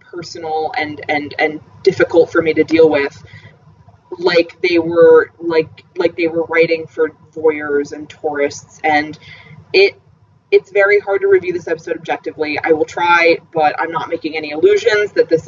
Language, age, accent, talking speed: English, 20-39, American, 165 wpm